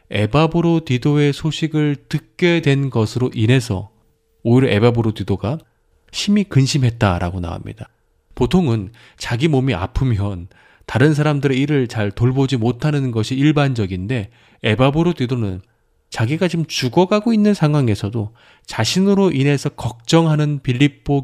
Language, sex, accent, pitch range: Korean, male, native, 105-140 Hz